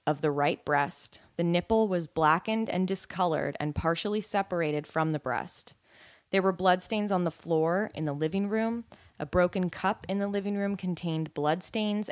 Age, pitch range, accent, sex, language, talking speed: 20-39, 155-190 Hz, American, female, English, 175 wpm